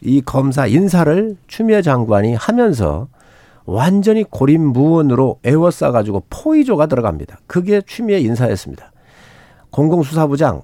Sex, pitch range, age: male, 120-200 Hz, 50-69